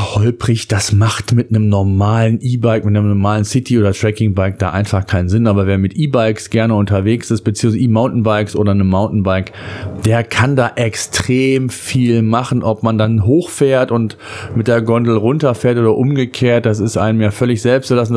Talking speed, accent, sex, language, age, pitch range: 175 wpm, German, male, German, 40-59, 110-140 Hz